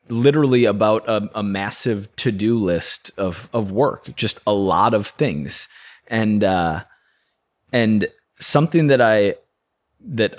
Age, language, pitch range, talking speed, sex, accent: 20-39, English, 105-130 Hz, 125 wpm, male, American